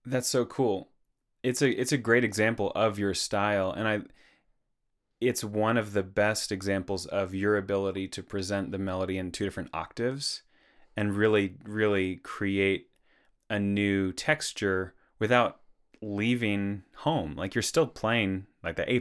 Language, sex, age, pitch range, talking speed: English, male, 20-39, 95-115 Hz, 150 wpm